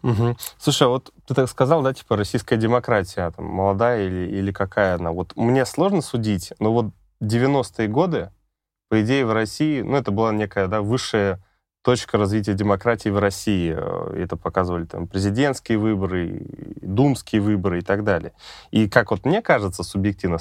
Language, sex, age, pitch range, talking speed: Russian, male, 20-39, 95-115 Hz, 160 wpm